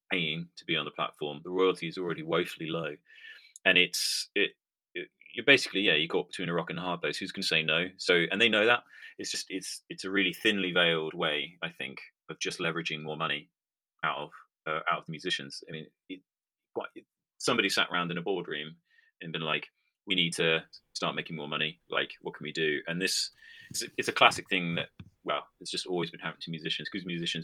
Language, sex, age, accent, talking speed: English, male, 30-49, British, 230 wpm